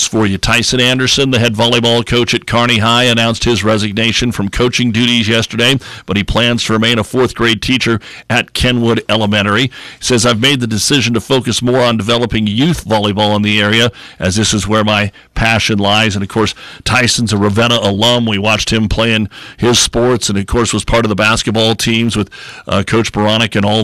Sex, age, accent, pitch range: male, 50-69, American, 105-115 Hz